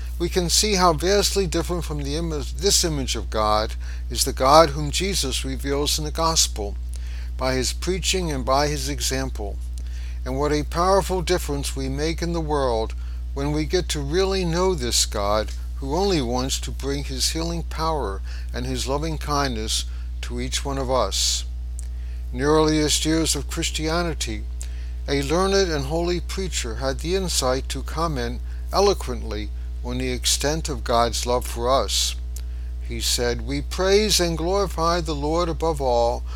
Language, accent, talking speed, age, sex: English, American, 160 wpm, 60-79, male